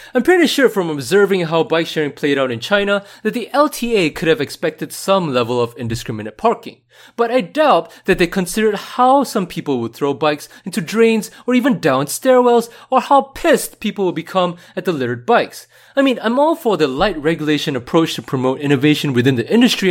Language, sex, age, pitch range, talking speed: English, male, 20-39, 150-235 Hz, 200 wpm